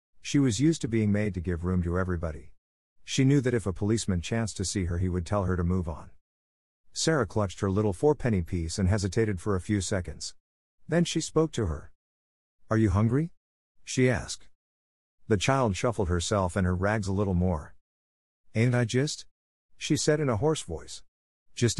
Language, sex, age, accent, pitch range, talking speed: English, male, 50-69, American, 80-125 Hz, 195 wpm